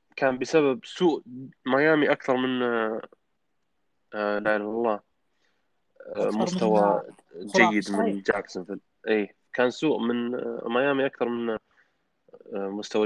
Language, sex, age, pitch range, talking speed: Arabic, male, 20-39, 105-120 Hz, 95 wpm